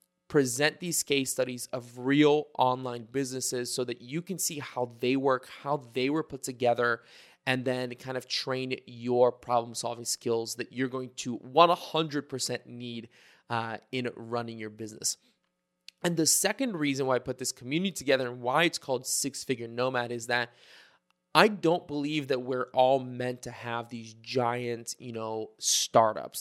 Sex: male